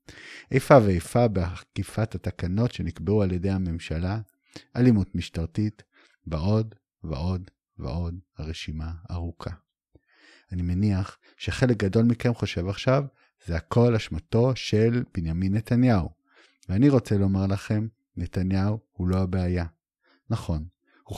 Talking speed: 110 wpm